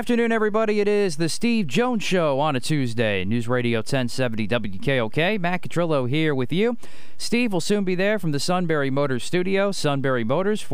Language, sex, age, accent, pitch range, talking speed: English, male, 40-59, American, 120-165 Hz, 180 wpm